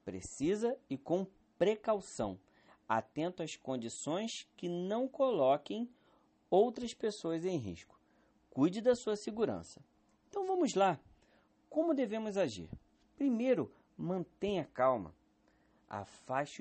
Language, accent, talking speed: Portuguese, Brazilian, 100 wpm